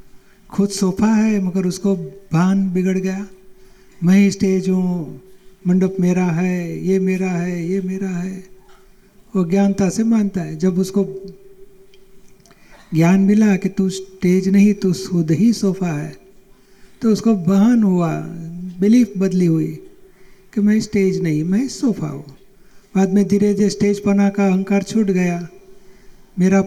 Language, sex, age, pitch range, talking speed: Gujarati, male, 50-69, 185-205 Hz, 120 wpm